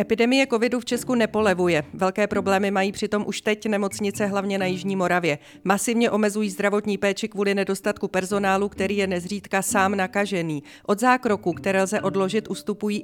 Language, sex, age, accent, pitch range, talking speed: Czech, female, 30-49, native, 190-225 Hz, 155 wpm